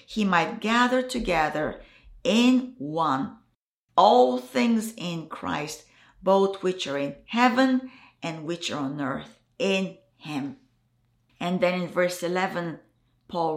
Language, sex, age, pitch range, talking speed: English, female, 50-69, 180-280 Hz, 125 wpm